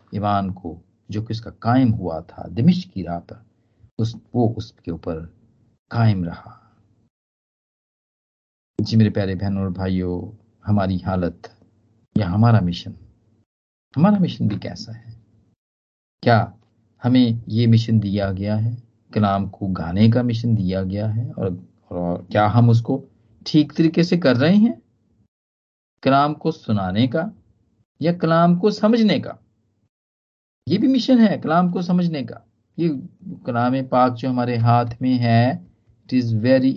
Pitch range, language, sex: 100-130 Hz, Hindi, male